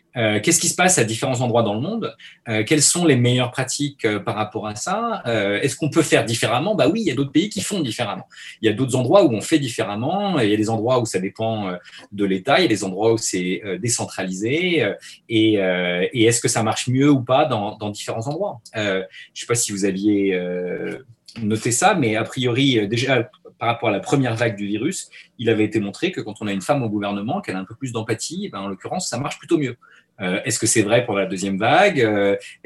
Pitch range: 100-130 Hz